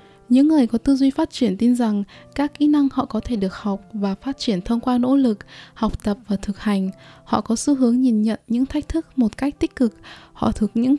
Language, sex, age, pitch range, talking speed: Vietnamese, female, 20-39, 215-260 Hz, 245 wpm